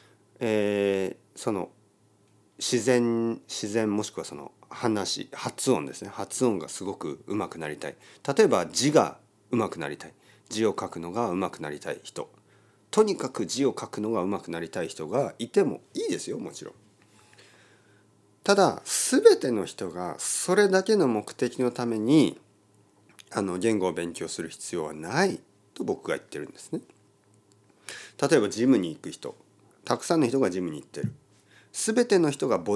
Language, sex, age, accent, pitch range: Japanese, male, 40-59, native, 100-145 Hz